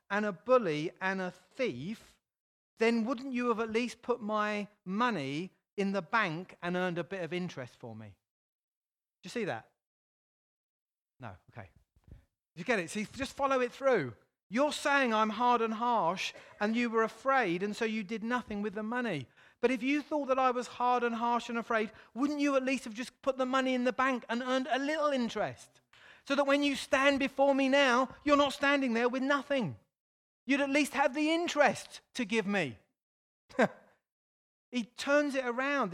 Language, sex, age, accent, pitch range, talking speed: English, male, 40-59, British, 180-250 Hz, 190 wpm